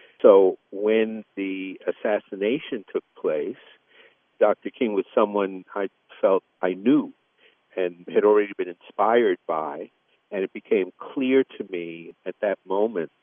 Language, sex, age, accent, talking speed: English, male, 50-69, American, 130 wpm